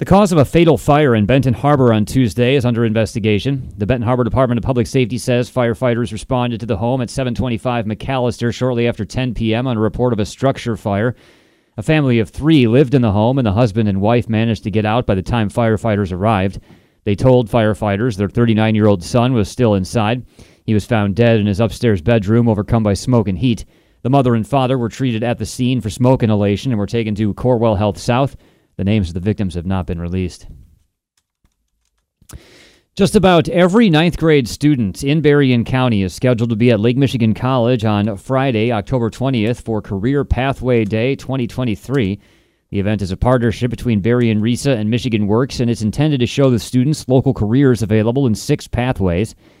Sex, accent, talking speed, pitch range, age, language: male, American, 195 wpm, 105-130 Hz, 30-49, English